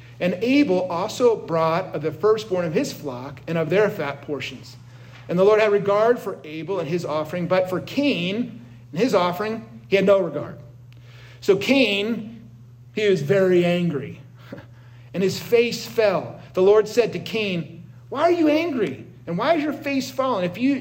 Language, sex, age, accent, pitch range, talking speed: English, male, 50-69, American, 140-200 Hz, 180 wpm